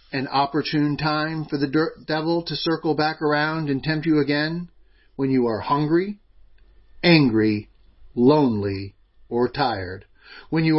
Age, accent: 40-59, American